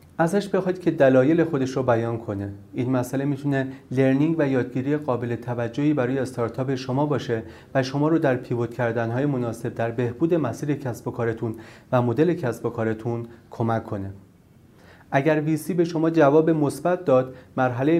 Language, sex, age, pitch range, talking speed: Persian, male, 30-49, 115-145 Hz, 160 wpm